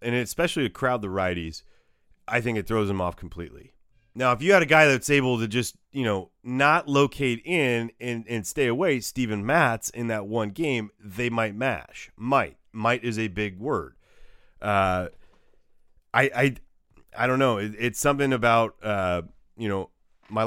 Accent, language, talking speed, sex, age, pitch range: American, English, 180 wpm, male, 30-49, 100-130 Hz